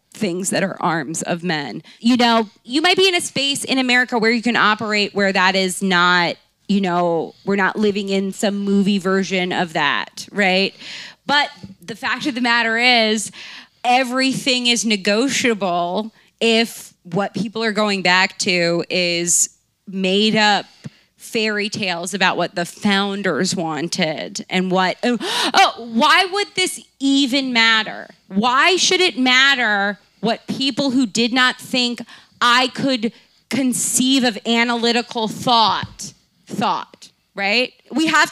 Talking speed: 145 wpm